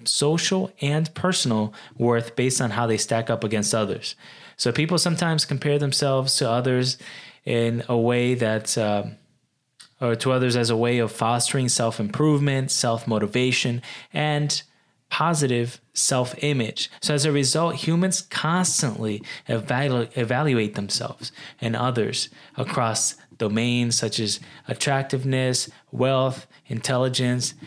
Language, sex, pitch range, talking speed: English, male, 115-140 Hz, 125 wpm